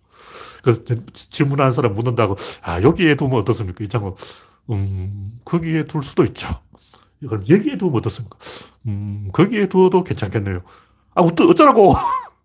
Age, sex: 40-59, male